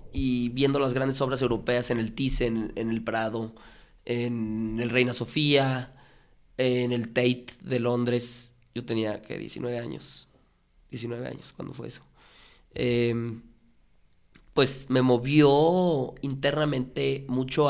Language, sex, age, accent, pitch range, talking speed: Spanish, male, 20-39, Mexican, 115-135 Hz, 125 wpm